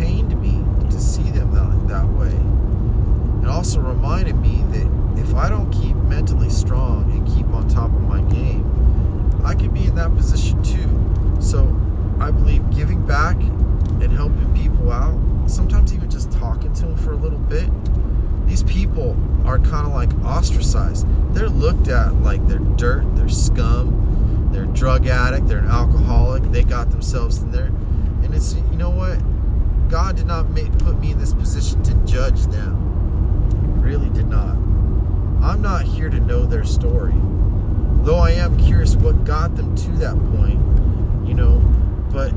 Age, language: 30-49, English